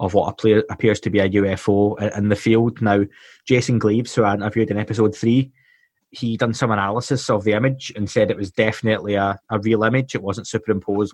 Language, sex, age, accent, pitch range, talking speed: English, male, 20-39, British, 100-115 Hz, 205 wpm